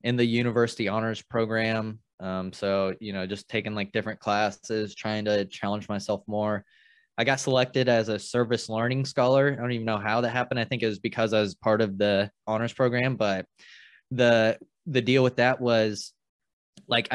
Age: 20-39